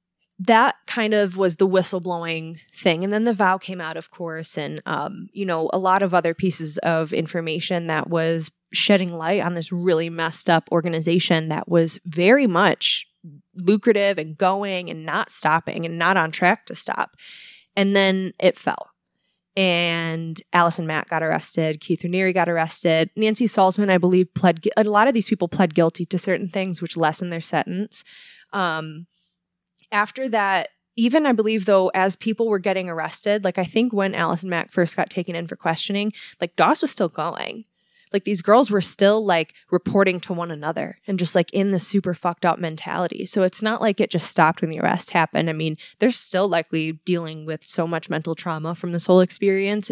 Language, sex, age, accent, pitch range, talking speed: English, female, 20-39, American, 165-200 Hz, 195 wpm